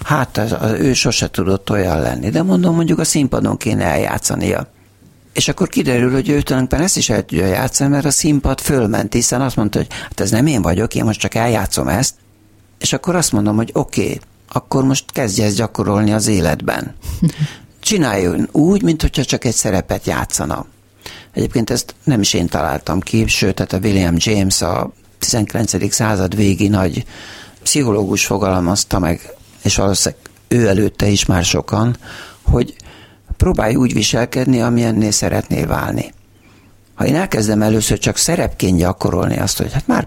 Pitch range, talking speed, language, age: 100-125 Hz, 165 wpm, Hungarian, 60-79